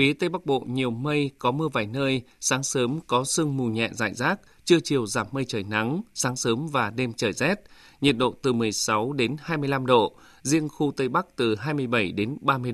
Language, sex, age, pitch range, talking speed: Vietnamese, male, 20-39, 120-145 Hz, 210 wpm